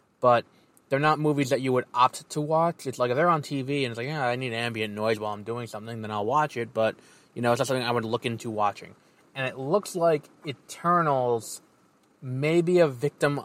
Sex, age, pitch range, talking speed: male, 20-39, 115-145 Hz, 230 wpm